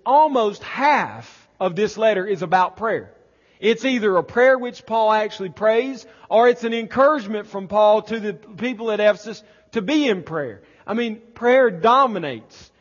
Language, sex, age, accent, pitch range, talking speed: English, male, 40-59, American, 185-235 Hz, 165 wpm